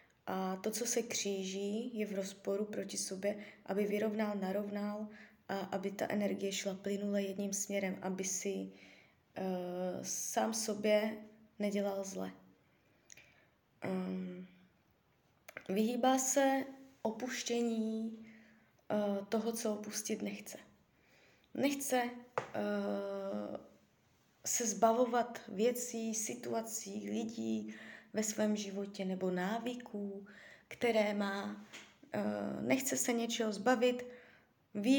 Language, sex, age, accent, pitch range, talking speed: Czech, female, 20-39, native, 200-225 Hz, 90 wpm